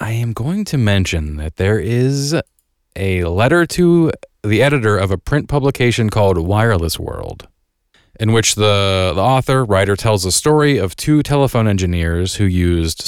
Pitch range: 85-105 Hz